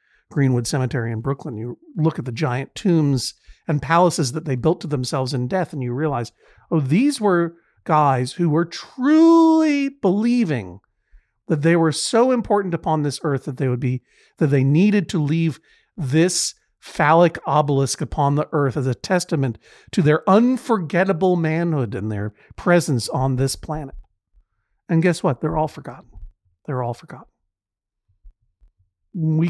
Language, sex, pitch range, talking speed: English, male, 125-170 Hz, 155 wpm